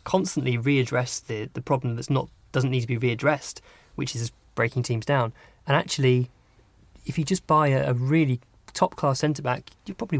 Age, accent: 20-39, British